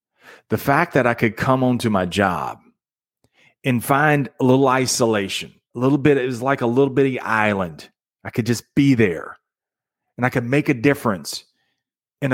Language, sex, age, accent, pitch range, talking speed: English, male, 40-59, American, 125-165 Hz, 170 wpm